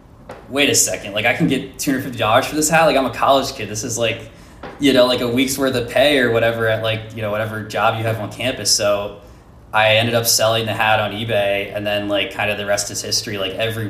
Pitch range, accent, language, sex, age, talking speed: 95-110 Hz, American, German, male, 20-39, 255 wpm